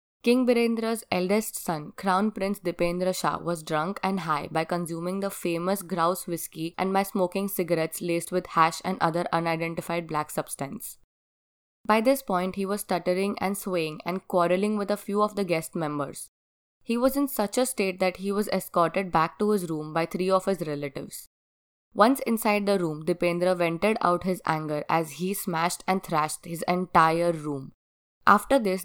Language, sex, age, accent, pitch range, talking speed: English, female, 20-39, Indian, 165-200 Hz, 175 wpm